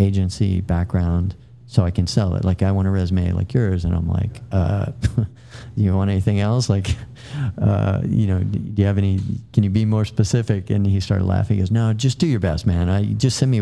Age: 40-59